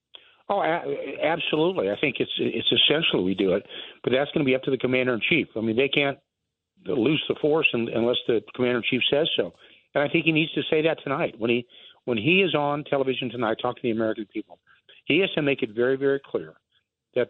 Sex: male